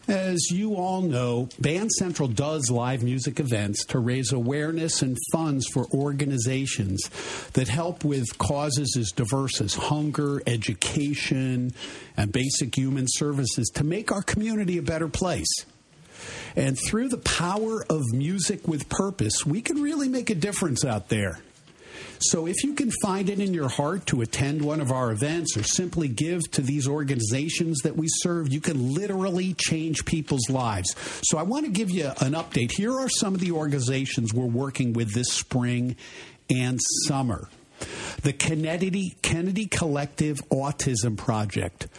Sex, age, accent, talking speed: male, 50-69, American, 155 wpm